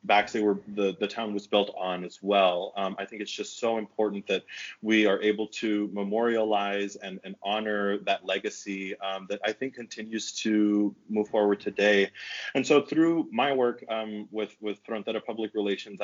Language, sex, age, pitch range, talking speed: English, male, 30-49, 100-110 Hz, 185 wpm